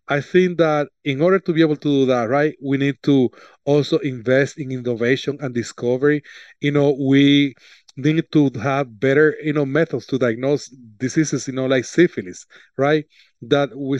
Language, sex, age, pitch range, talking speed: English, male, 30-49, 130-150 Hz, 175 wpm